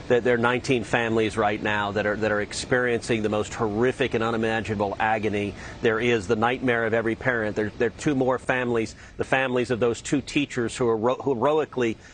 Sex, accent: male, American